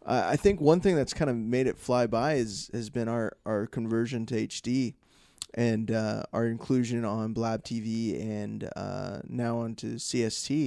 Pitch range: 110-125 Hz